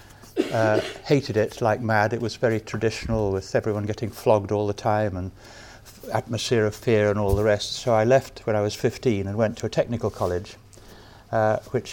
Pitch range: 105-115 Hz